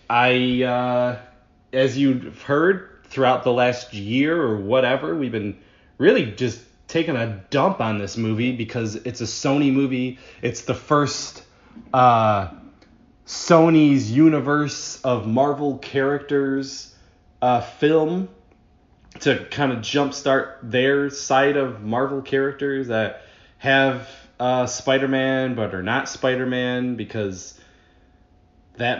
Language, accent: English, American